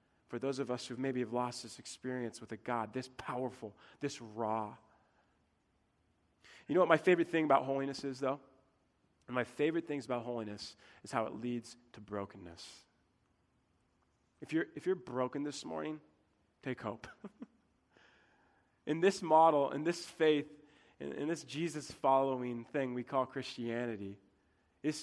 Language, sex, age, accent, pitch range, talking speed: English, male, 20-39, American, 120-165 Hz, 145 wpm